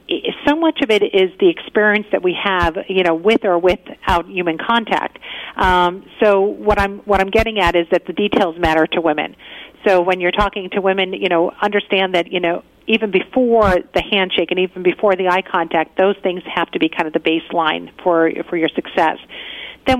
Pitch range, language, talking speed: 175-215 Hz, English, 205 wpm